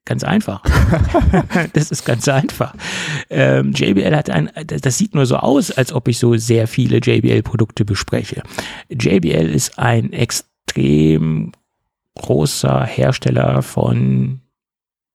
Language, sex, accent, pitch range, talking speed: German, male, German, 115-140 Hz, 115 wpm